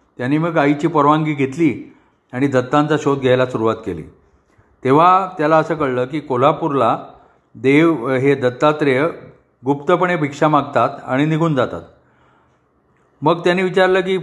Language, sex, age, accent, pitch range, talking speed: Marathi, male, 40-59, native, 135-170 Hz, 125 wpm